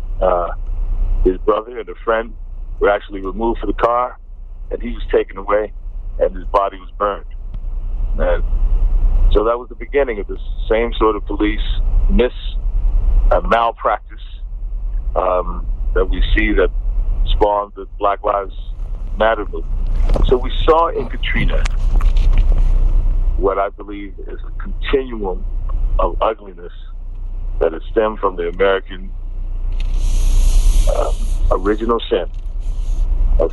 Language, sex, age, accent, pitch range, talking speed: English, male, 50-69, American, 90-110 Hz, 125 wpm